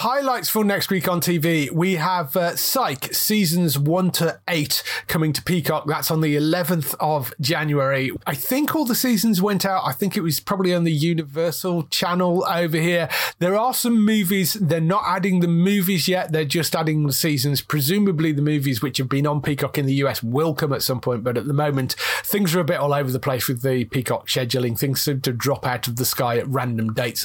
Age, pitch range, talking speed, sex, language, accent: 30-49, 135-175 Hz, 220 wpm, male, English, British